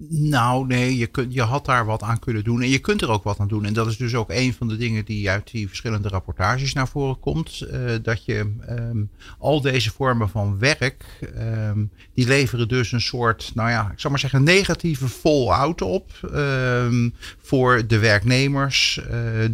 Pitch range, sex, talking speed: 105-130 Hz, male, 200 wpm